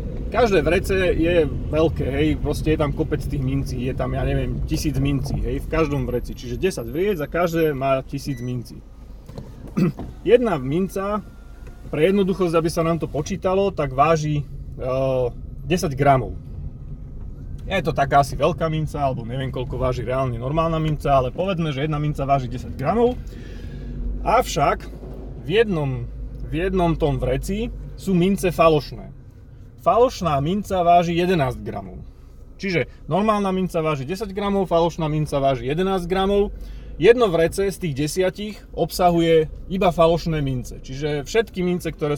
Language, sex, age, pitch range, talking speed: Slovak, male, 30-49, 135-185 Hz, 145 wpm